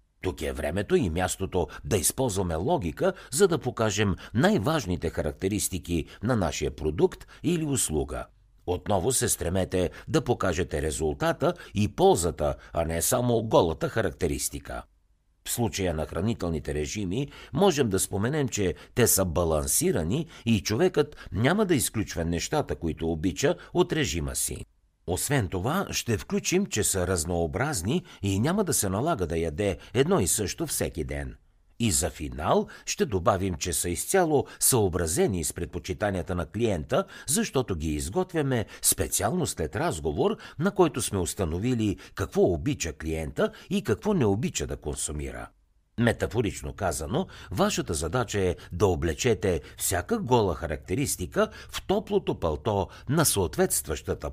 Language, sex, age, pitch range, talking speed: Bulgarian, male, 60-79, 85-125 Hz, 135 wpm